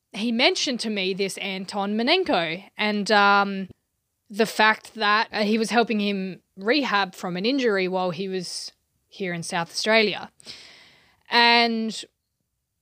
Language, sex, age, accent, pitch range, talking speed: English, female, 20-39, Australian, 200-235 Hz, 130 wpm